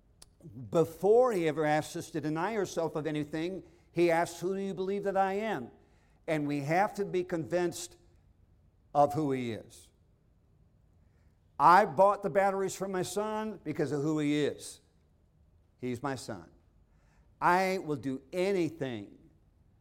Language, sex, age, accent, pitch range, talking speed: English, male, 50-69, American, 100-165 Hz, 145 wpm